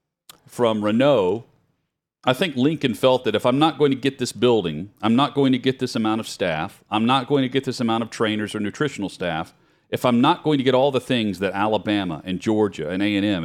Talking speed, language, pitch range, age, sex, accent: 230 wpm, English, 105-130 Hz, 40-59, male, American